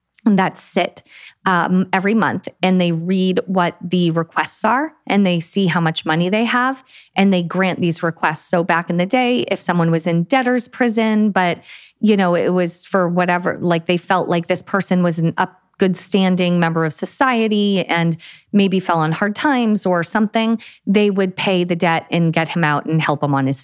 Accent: American